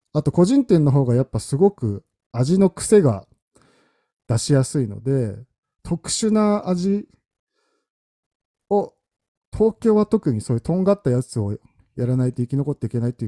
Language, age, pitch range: Japanese, 50-69, 110-155 Hz